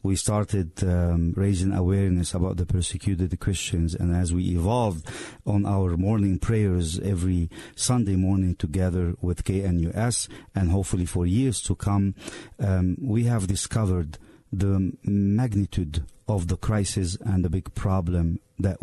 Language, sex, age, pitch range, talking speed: English, male, 50-69, 90-105 Hz, 135 wpm